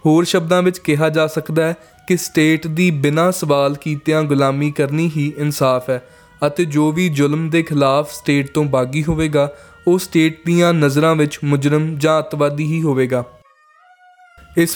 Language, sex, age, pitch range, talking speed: Punjabi, male, 20-39, 145-170 Hz, 160 wpm